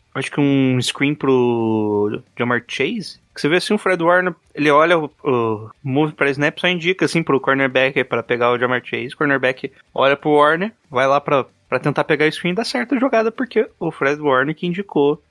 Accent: Brazilian